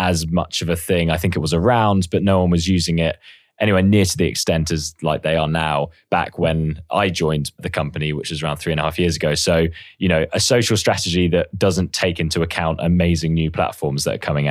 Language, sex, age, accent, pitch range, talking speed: English, male, 20-39, British, 80-95 Hz, 240 wpm